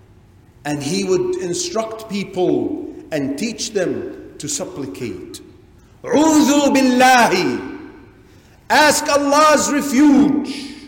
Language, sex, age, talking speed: English, male, 50-69, 85 wpm